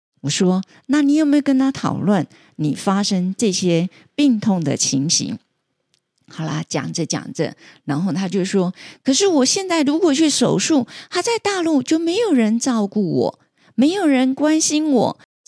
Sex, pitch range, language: female, 175-280 Hz, Chinese